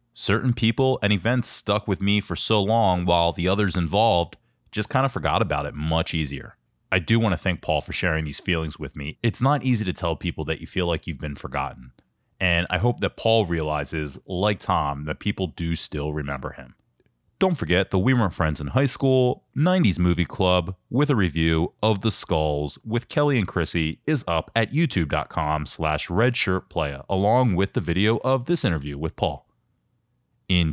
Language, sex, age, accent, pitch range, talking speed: English, male, 30-49, American, 80-115 Hz, 190 wpm